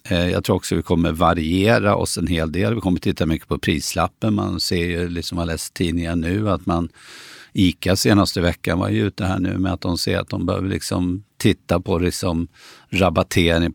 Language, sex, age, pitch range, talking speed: Swedish, male, 50-69, 85-110 Hz, 200 wpm